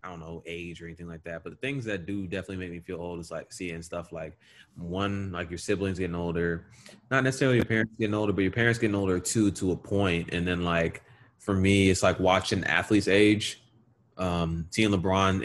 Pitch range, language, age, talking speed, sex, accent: 95-155 Hz, English, 20-39, 220 wpm, male, American